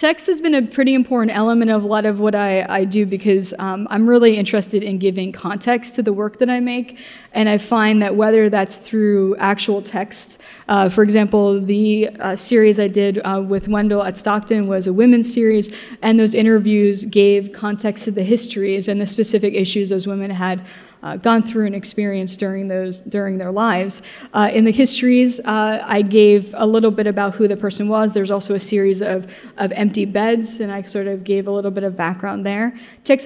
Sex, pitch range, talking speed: female, 200-225 Hz, 210 wpm